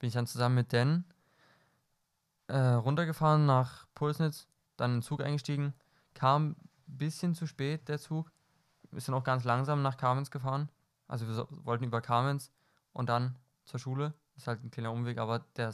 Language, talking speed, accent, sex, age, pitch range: German, 185 wpm, German, male, 20-39, 120-150 Hz